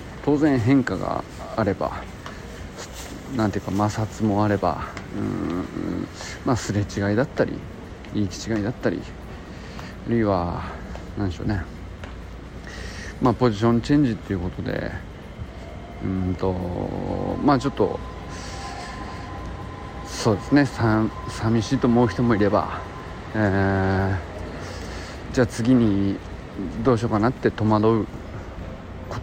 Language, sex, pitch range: Japanese, male, 95-120 Hz